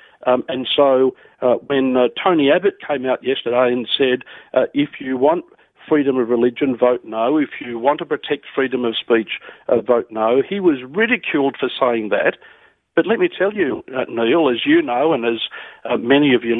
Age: 50-69